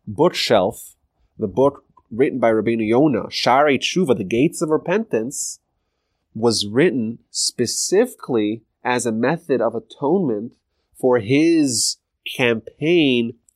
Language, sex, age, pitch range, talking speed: English, male, 30-49, 100-120 Hz, 105 wpm